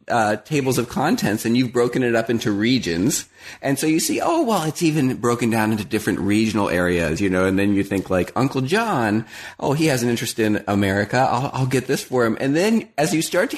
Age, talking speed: 30-49, 235 wpm